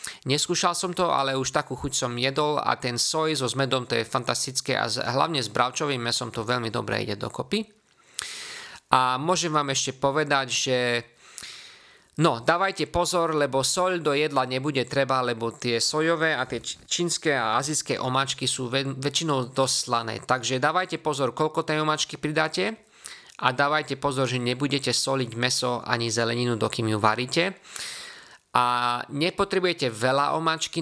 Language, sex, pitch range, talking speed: Slovak, male, 125-155 Hz, 150 wpm